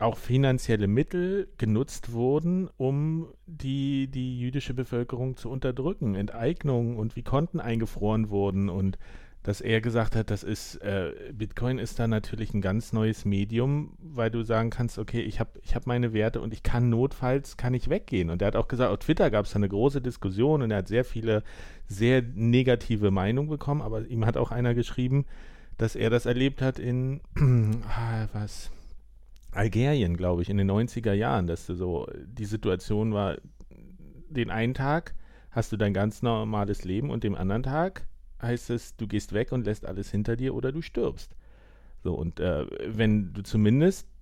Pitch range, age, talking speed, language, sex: 100-130 Hz, 40-59, 180 wpm, German, male